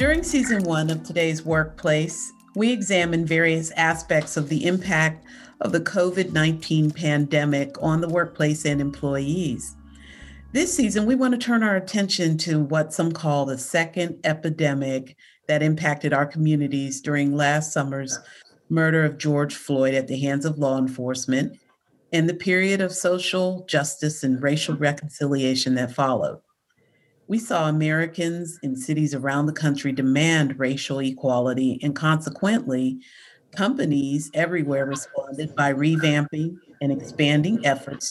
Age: 40-59